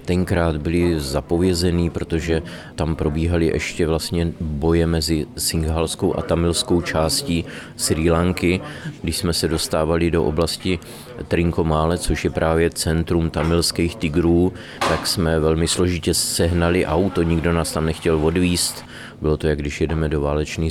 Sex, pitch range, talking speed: male, 75-85 Hz, 135 wpm